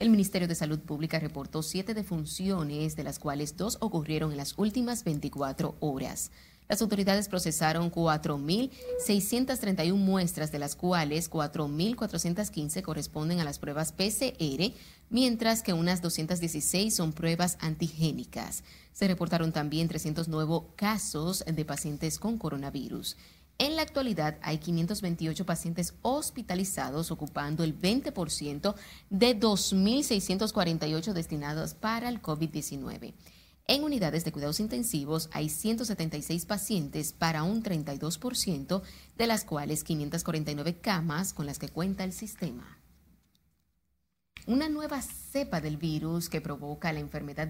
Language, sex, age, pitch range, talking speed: Spanish, female, 30-49, 155-205 Hz, 120 wpm